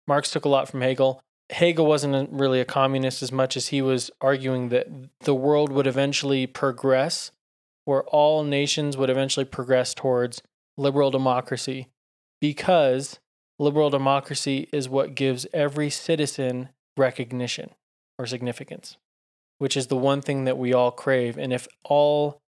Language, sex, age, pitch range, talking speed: English, male, 20-39, 130-145 Hz, 150 wpm